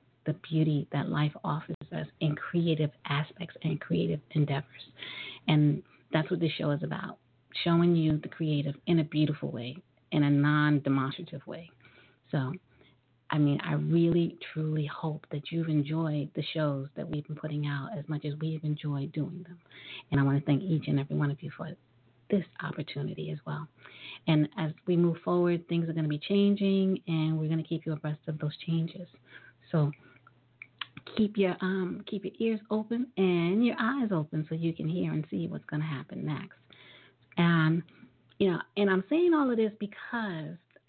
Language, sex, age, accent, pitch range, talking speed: English, female, 40-59, American, 145-180 Hz, 185 wpm